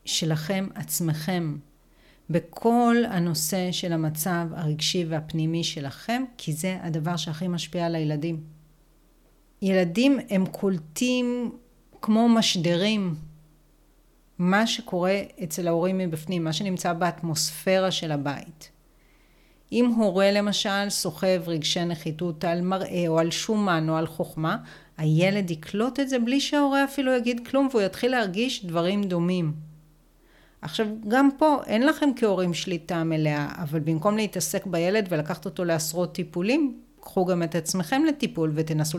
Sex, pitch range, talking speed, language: female, 160-215 Hz, 125 wpm, Hebrew